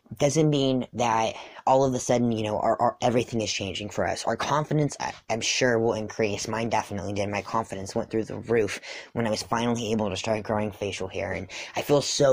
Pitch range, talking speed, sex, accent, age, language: 105-120 Hz, 210 wpm, female, American, 10-29, English